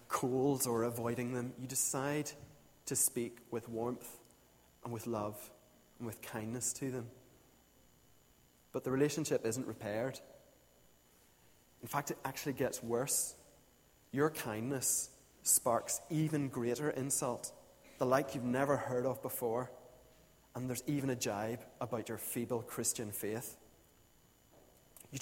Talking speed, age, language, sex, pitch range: 125 wpm, 30-49, English, male, 115-140 Hz